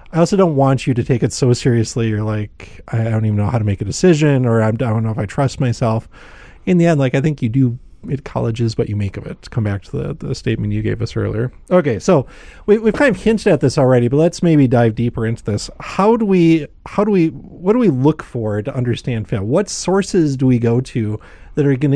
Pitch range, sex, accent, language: 115-160 Hz, male, American, English